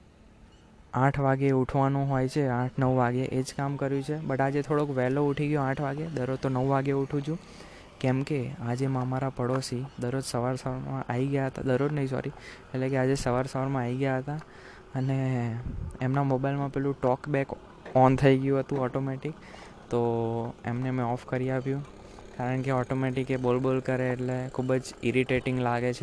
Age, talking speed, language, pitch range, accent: 20-39, 145 wpm, Gujarati, 125-135 Hz, native